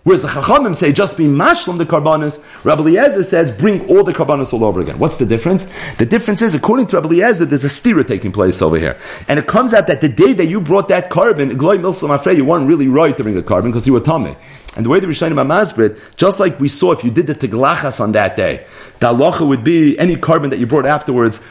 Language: English